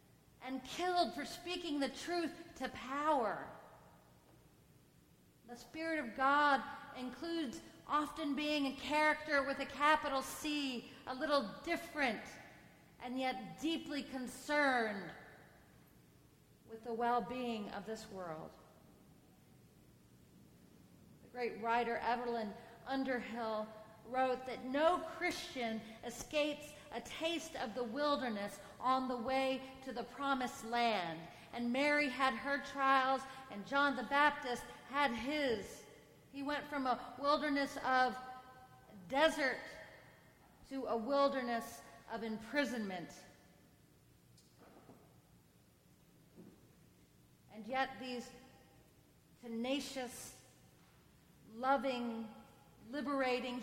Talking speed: 95 wpm